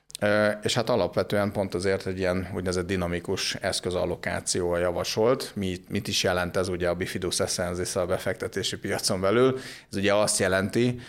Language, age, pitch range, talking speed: Hungarian, 30-49, 90-100 Hz, 150 wpm